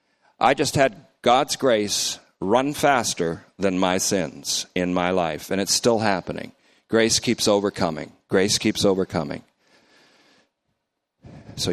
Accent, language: American, English